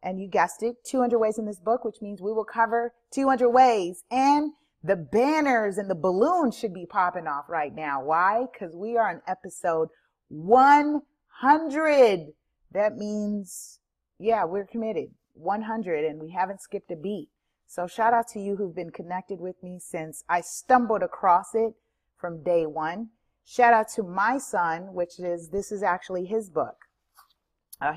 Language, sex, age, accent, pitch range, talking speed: English, female, 30-49, American, 170-225 Hz, 165 wpm